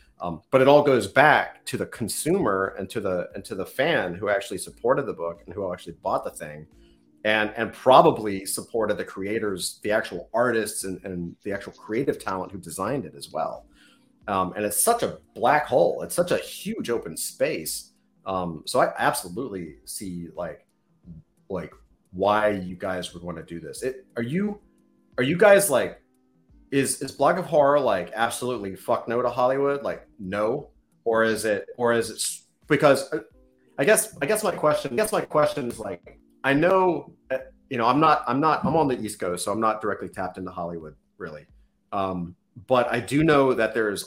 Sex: male